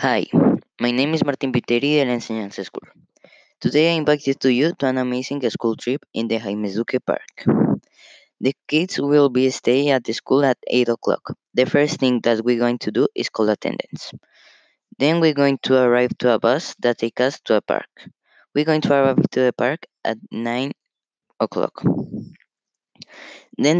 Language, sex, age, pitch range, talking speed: English, female, 20-39, 110-135 Hz, 180 wpm